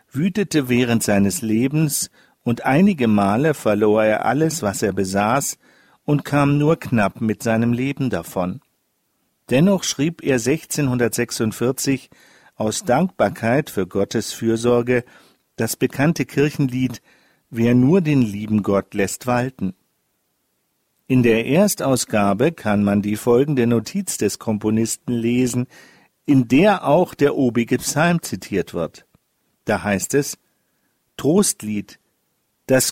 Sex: male